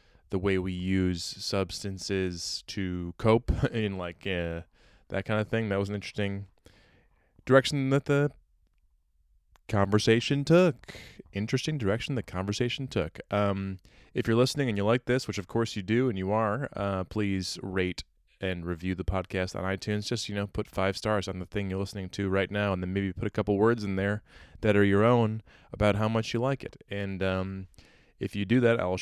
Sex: male